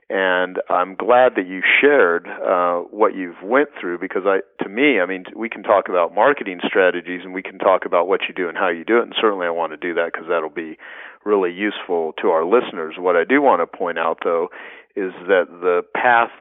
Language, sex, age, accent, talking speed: English, male, 40-59, American, 230 wpm